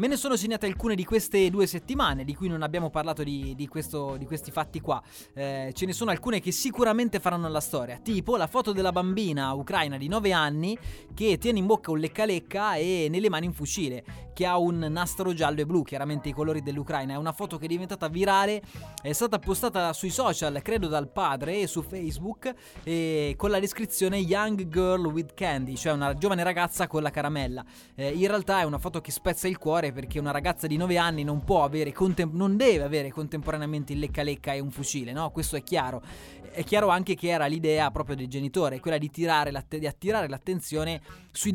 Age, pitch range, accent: 20-39, 145-190 Hz, native